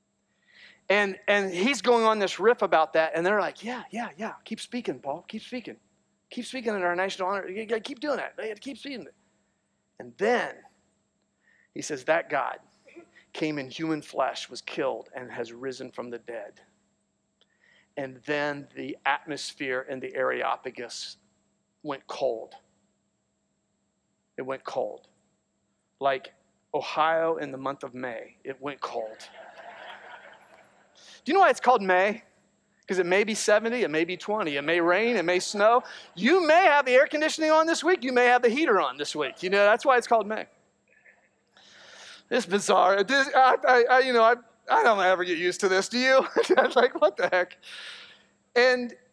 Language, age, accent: English, 40-59, American